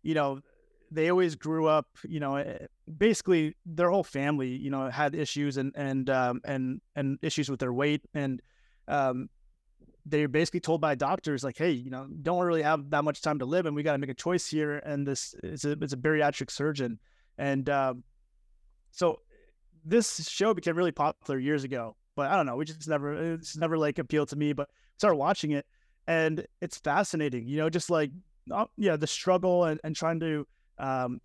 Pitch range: 140-165 Hz